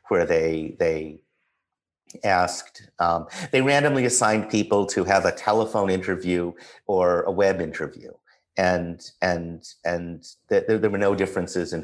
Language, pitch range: English, 85-110 Hz